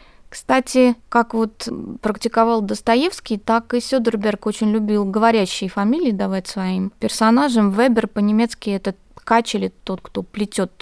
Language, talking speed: Russian, 130 wpm